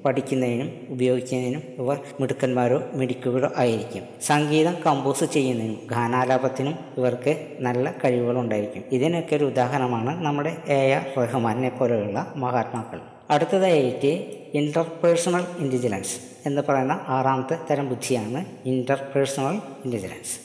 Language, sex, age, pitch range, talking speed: Malayalam, female, 20-39, 125-155 Hz, 90 wpm